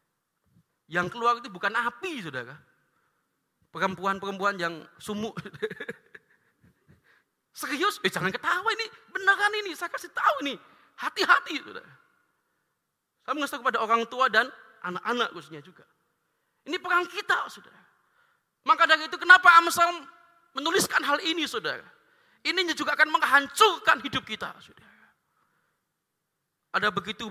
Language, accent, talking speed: Indonesian, native, 115 wpm